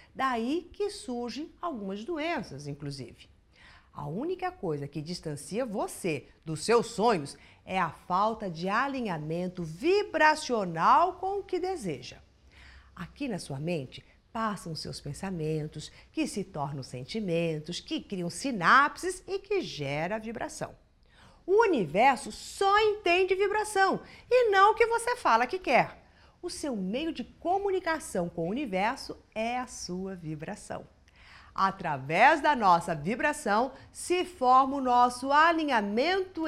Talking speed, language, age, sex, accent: 125 wpm, Portuguese, 50-69, female, Brazilian